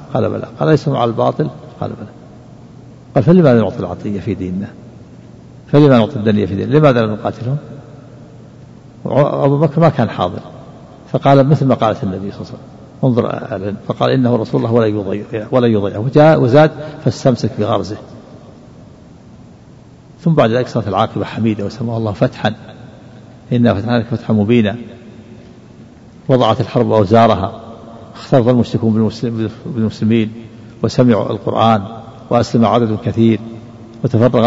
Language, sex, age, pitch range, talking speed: Arabic, male, 50-69, 110-135 Hz, 135 wpm